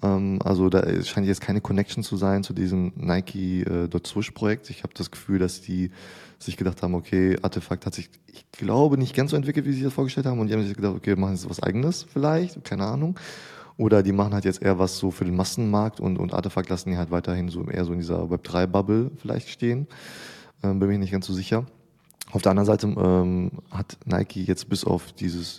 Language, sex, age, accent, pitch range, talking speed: German, male, 20-39, German, 90-105 Hz, 225 wpm